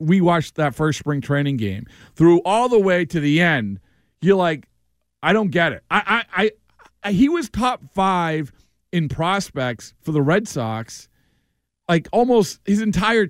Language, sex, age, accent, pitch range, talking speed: English, male, 40-59, American, 155-215 Hz, 165 wpm